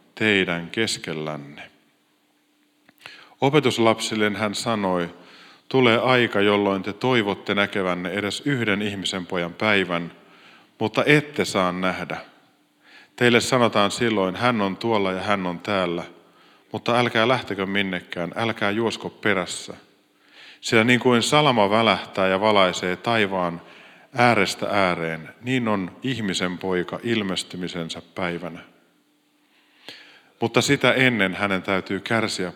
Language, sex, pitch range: Finnish, male, 90-110 Hz